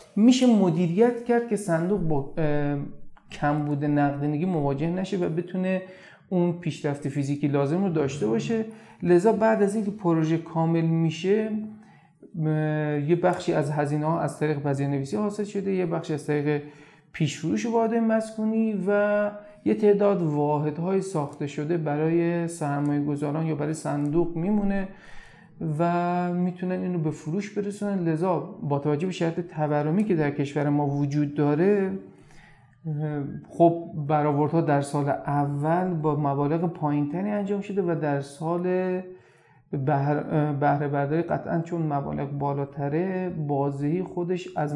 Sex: male